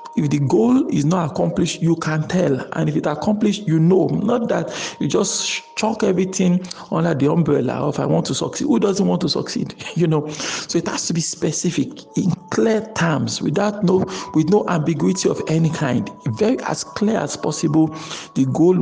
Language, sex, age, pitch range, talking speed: English, male, 50-69, 145-180 Hz, 190 wpm